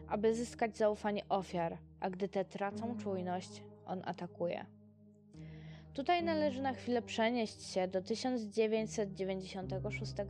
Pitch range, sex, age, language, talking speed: 145-225 Hz, female, 20-39, Polish, 110 wpm